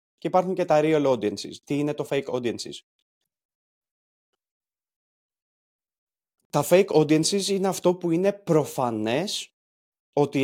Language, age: Greek, 20-39